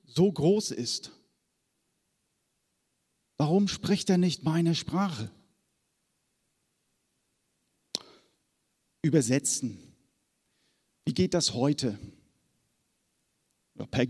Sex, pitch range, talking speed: male, 135-165 Hz, 65 wpm